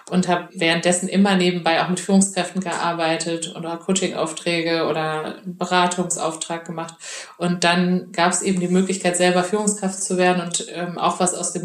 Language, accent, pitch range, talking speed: German, German, 170-190 Hz, 165 wpm